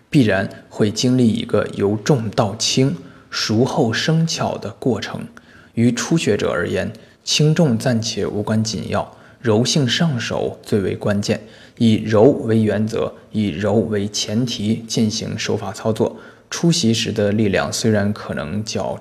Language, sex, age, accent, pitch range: Chinese, male, 20-39, native, 105-125 Hz